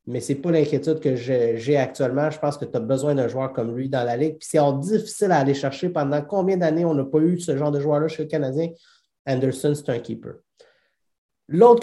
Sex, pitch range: male, 135-175 Hz